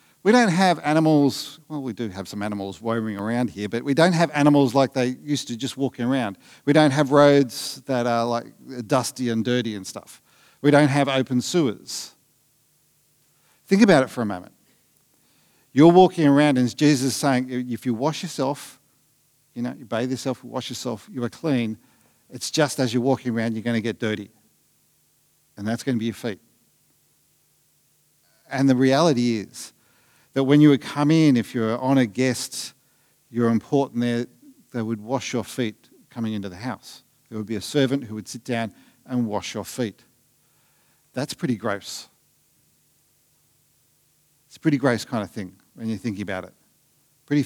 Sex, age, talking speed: male, 50-69, 180 wpm